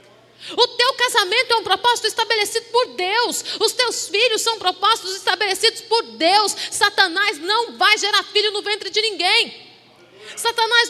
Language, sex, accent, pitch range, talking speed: Portuguese, female, Brazilian, 305-435 Hz, 150 wpm